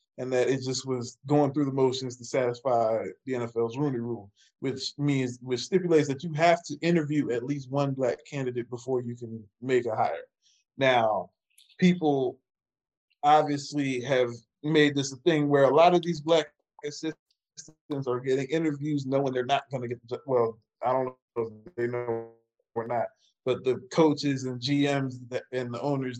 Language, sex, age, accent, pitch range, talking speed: English, male, 20-39, American, 125-160 Hz, 175 wpm